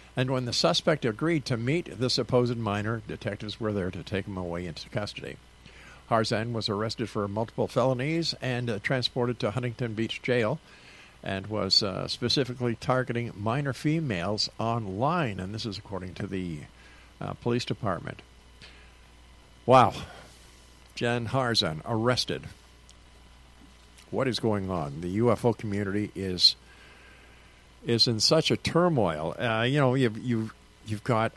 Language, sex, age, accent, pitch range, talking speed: English, male, 50-69, American, 85-120 Hz, 140 wpm